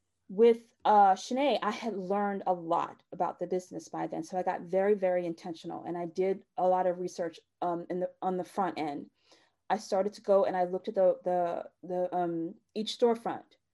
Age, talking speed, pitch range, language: 30-49, 205 wpm, 185-235 Hz, English